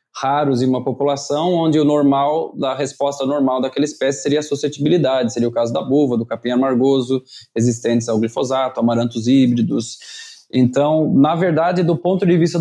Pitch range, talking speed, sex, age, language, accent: 135-165 Hz, 165 wpm, male, 20-39, Portuguese, Brazilian